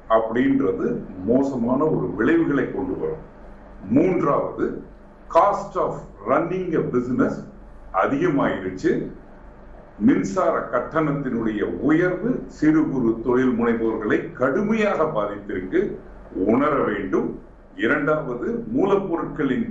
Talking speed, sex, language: 65 wpm, male, Tamil